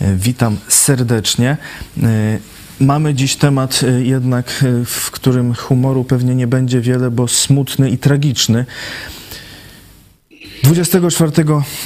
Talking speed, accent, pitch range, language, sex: 90 wpm, native, 110-130 Hz, Polish, male